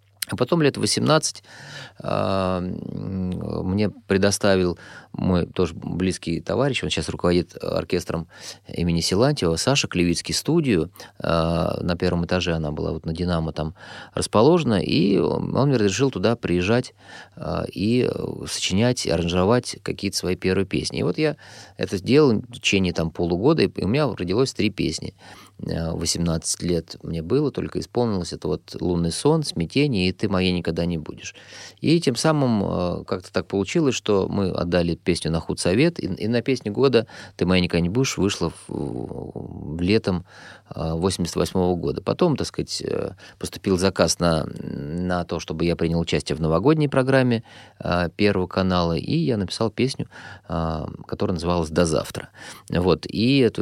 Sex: male